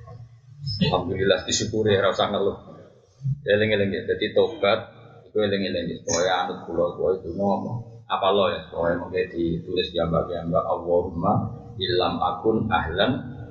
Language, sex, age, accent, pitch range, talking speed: Indonesian, male, 30-49, native, 110-150 Hz, 70 wpm